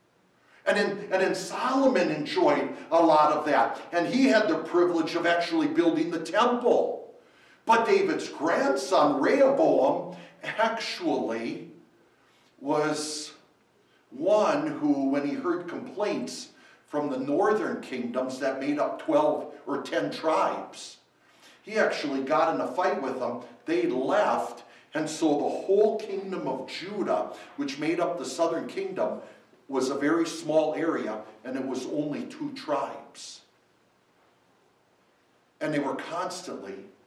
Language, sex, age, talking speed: English, male, 60-79, 130 wpm